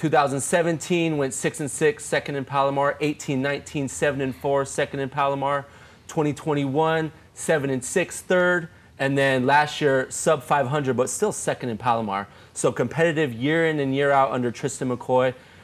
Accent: American